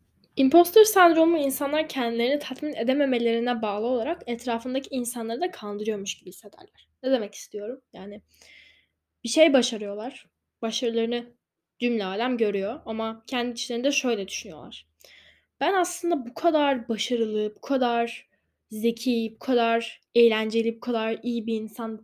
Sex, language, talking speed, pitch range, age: female, Turkish, 130 wpm, 220-280 Hz, 10-29